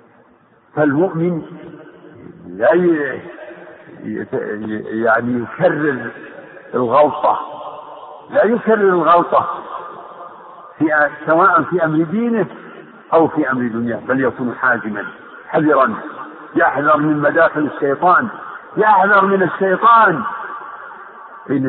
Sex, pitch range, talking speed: male, 140-195 Hz, 85 wpm